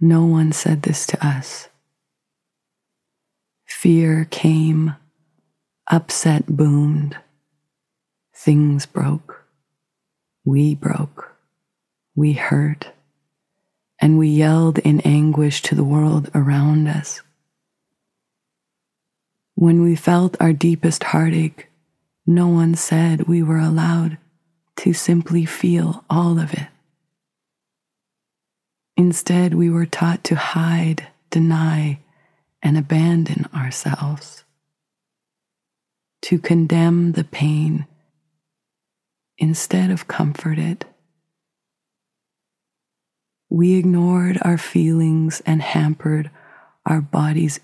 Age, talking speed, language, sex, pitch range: 30-49, 90 wpm, English, female, 155-170 Hz